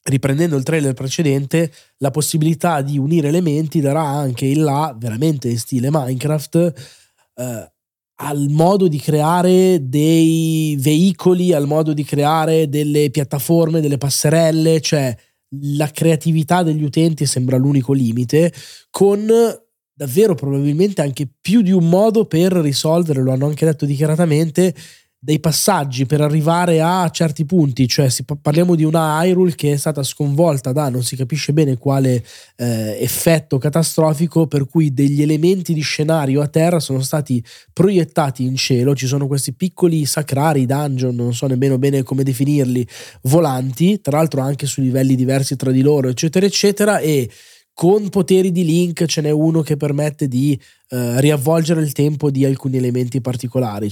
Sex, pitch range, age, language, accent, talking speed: male, 135-165 Hz, 20-39, Italian, native, 150 wpm